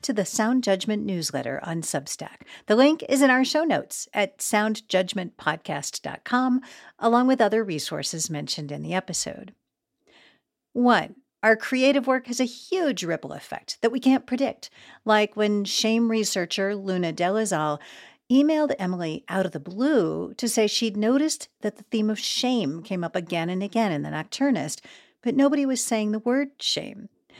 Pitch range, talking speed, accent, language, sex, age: 175-245 Hz, 160 wpm, American, English, female, 50-69